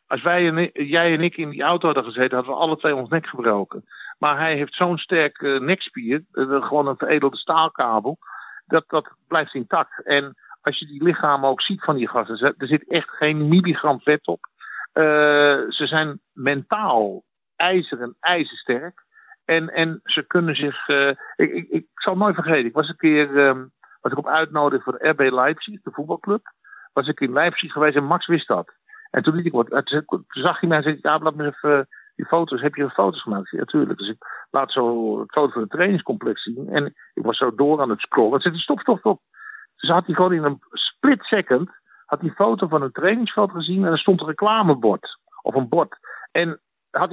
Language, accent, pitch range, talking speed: Dutch, Dutch, 140-175 Hz, 210 wpm